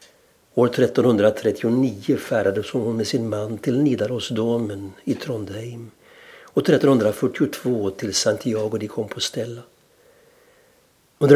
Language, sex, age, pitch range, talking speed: Swedish, male, 60-79, 110-150 Hz, 95 wpm